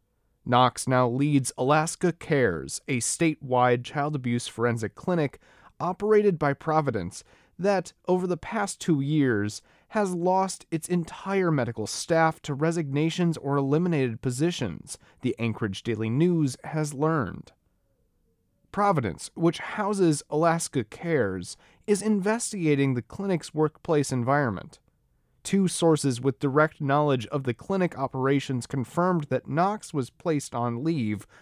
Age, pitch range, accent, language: 30-49, 125-165 Hz, American, English